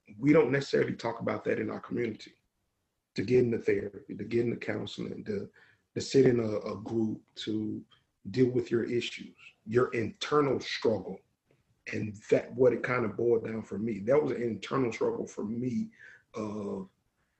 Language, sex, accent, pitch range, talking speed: English, male, American, 105-125 Hz, 170 wpm